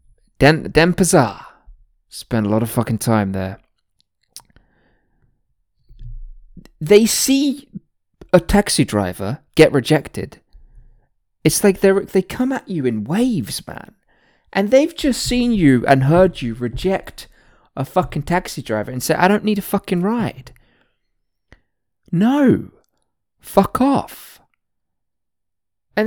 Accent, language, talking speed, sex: British, English, 120 wpm, male